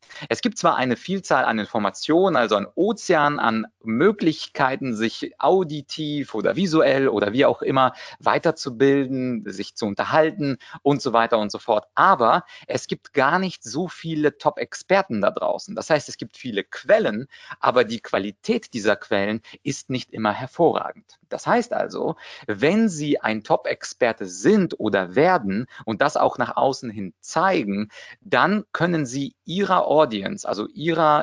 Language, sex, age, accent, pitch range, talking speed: German, male, 30-49, German, 115-155 Hz, 150 wpm